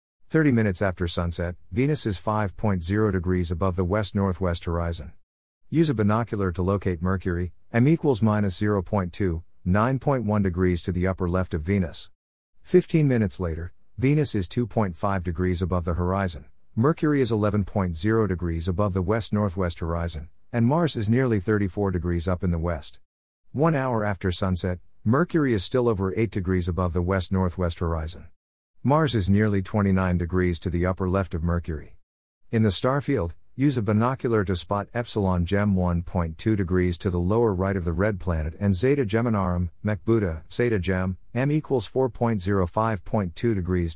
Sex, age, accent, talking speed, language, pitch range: male, 50-69, American, 160 wpm, English, 90-110 Hz